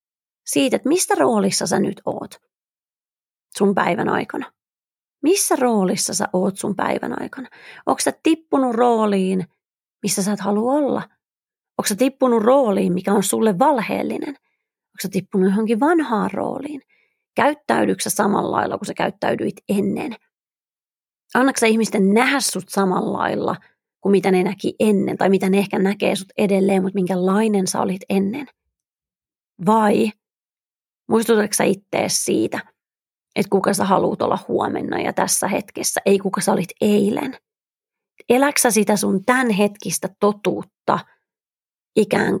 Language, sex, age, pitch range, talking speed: Finnish, female, 30-49, 195-250 Hz, 130 wpm